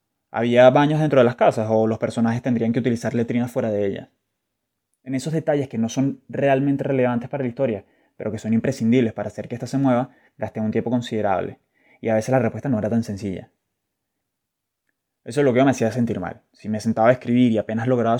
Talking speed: 220 wpm